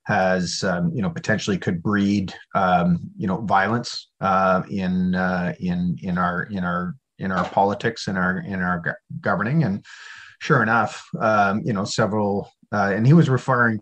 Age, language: 30-49, English